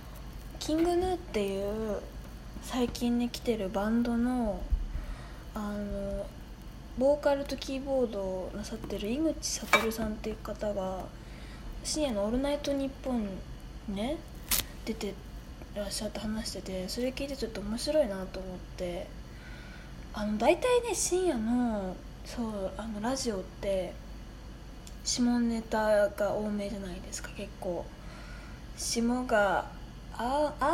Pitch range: 200-265 Hz